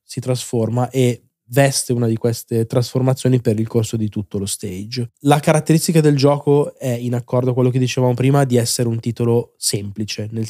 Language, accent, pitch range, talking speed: Italian, native, 115-135 Hz, 190 wpm